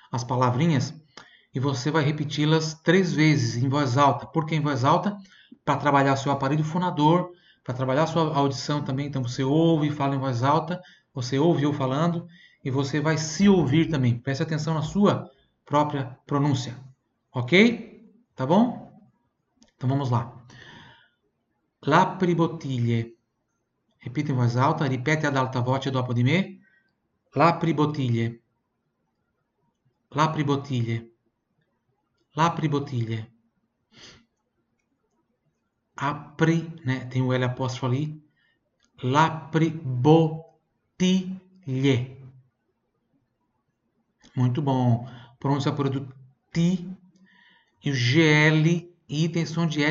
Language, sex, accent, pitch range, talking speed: Italian, male, Brazilian, 130-165 Hz, 110 wpm